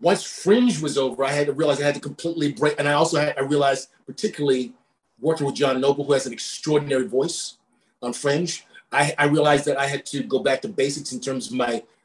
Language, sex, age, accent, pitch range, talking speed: English, male, 40-59, American, 135-160 Hz, 230 wpm